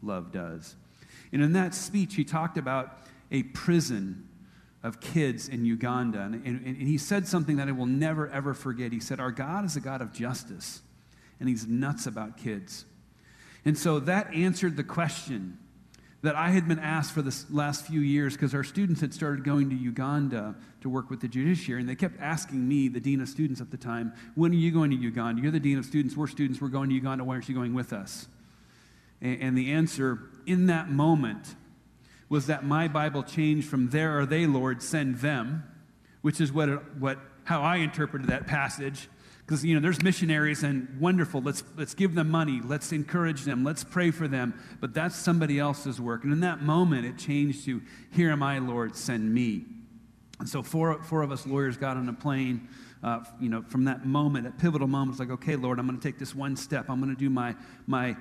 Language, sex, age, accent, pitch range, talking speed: English, male, 40-59, American, 130-155 Hz, 210 wpm